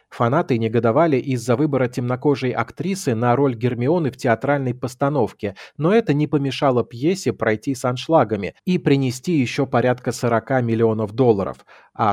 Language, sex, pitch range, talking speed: Russian, male, 115-140 Hz, 140 wpm